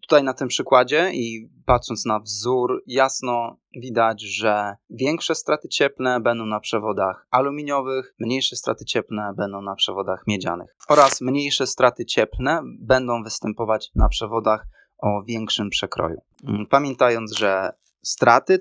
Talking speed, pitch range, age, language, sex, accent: 125 wpm, 105-125 Hz, 20-39, Polish, male, native